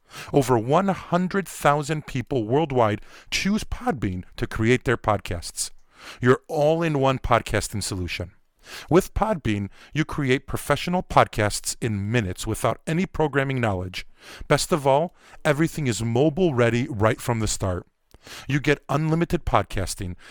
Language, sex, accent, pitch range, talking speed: English, male, American, 105-155 Hz, 120 wpm